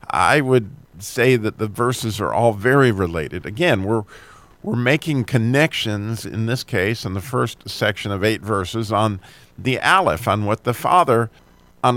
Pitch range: 100-130 Hz